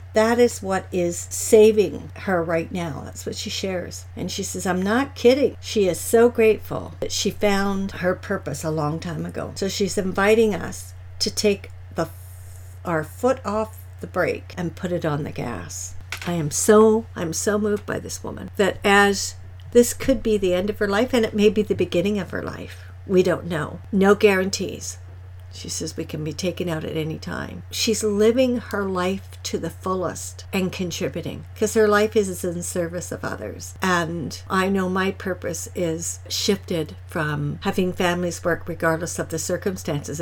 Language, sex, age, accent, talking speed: English, female, 60-79, American, 185 wpm